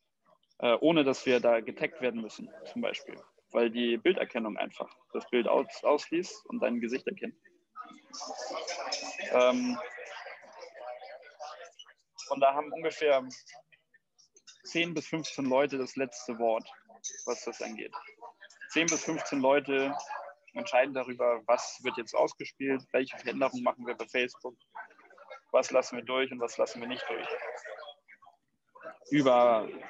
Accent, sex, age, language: German, male, 20-39, German